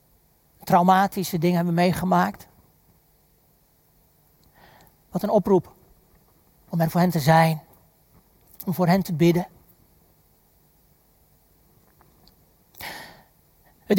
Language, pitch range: Dutch, 185-250 Hz